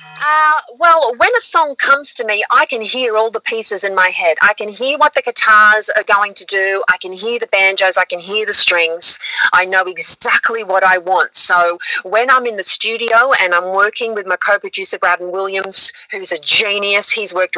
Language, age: English, 40-59